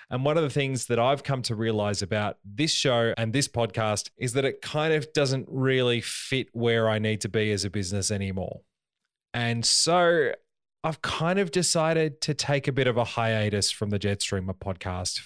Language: English